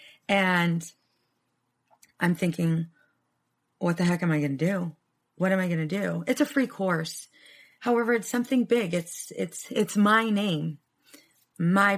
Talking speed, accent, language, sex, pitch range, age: 155 wpm, American, English, female, 155-195 Hz, 30-49